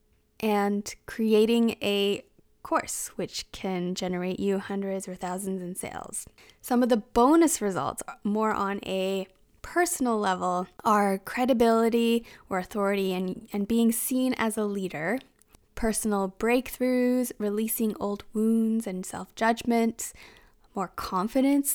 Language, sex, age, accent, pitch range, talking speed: English, female, 10-29, American, 195-230 Hz, 120 wpm